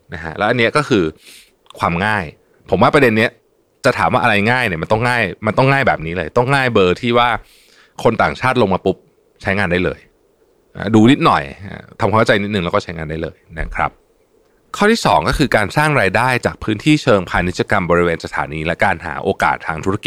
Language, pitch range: Thai, 90-135 Hz